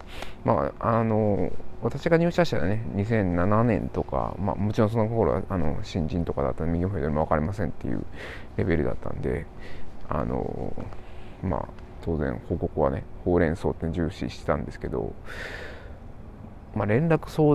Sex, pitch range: male, 85-110 Hz